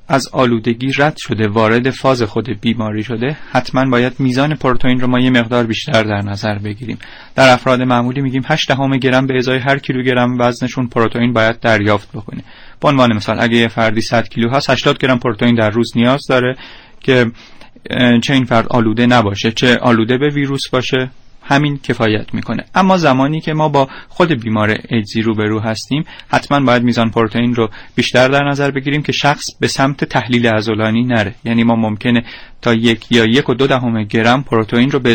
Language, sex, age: Persian, male, 30-49